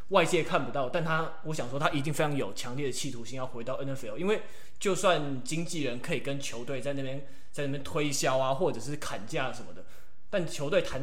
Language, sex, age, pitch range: Chinese, male, 20-39, 125-165 Hz